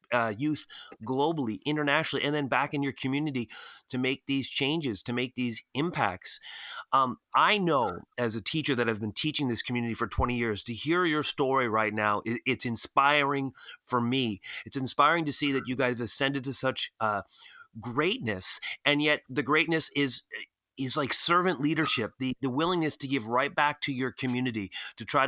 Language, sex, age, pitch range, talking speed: English, male, 30-49, 120-145 Hz, 180 wpm